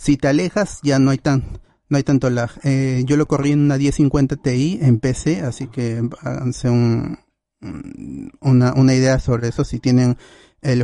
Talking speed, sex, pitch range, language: 185 wpm, male, 125-145 Hz, Spanish